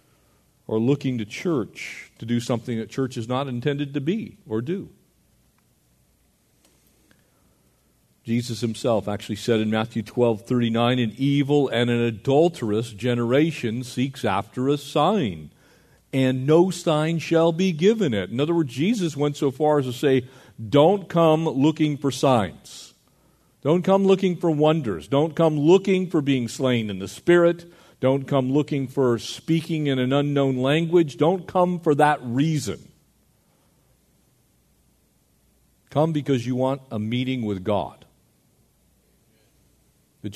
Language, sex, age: English, male, 50-69